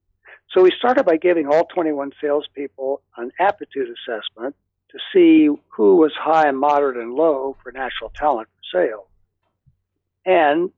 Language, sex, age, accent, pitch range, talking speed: English, male, 60-79, American, 110-165 Hz, 145 wpm